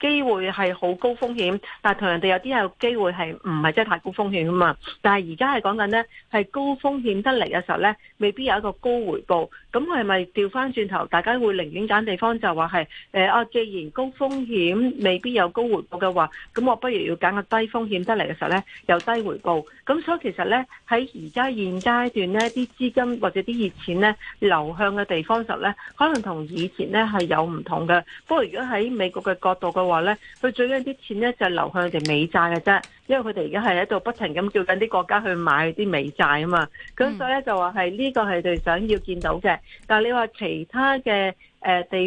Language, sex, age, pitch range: Chinese, female, 40-59, 180-235 Hz